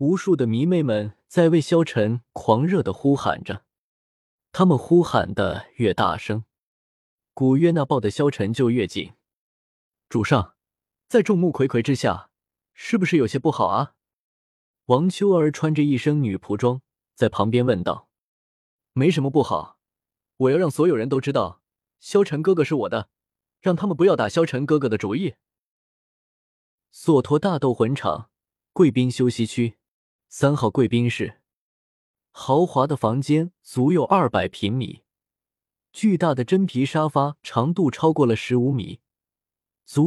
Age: 20-39